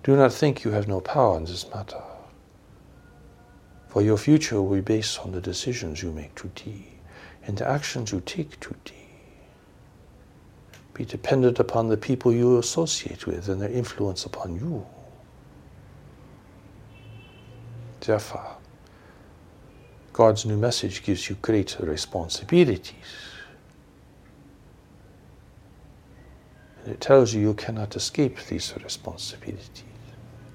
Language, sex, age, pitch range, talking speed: English, male, 60-79, 95-125 Hz, 115 wpm